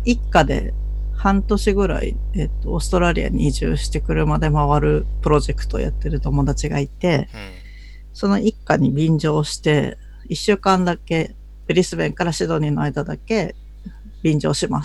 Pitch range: 140-200 Hz